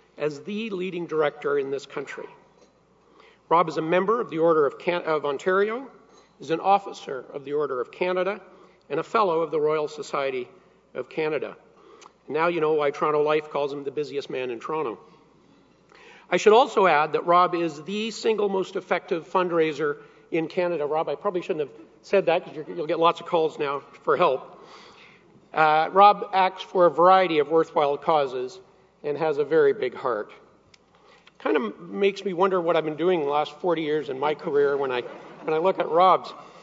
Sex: male